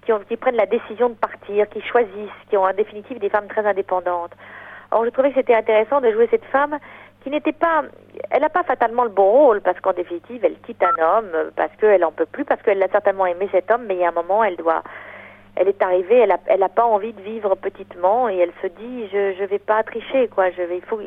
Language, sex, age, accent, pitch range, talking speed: French, female, 40-59, French, 190-270 Hz, 260 wpm